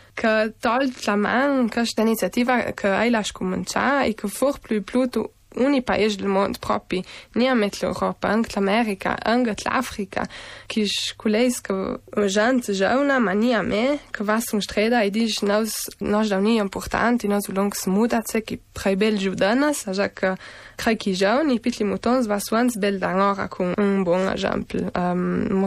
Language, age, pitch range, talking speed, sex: Italian, 20-39, 195-230 Hz, 165 wpm, female